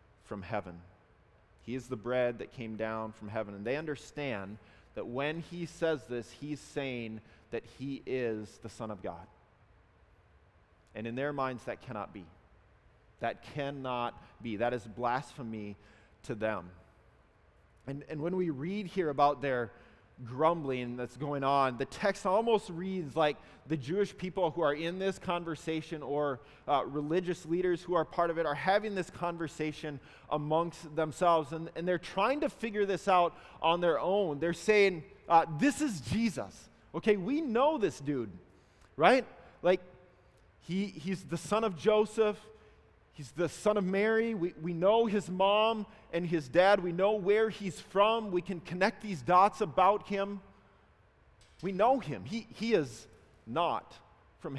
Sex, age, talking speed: male, 30-49, 160 wpm